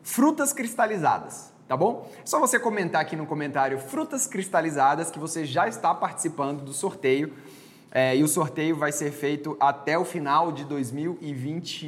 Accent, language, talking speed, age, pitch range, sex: Brazilian, Portuguese, 160 wpm, 20-39, 130-165 Hz, male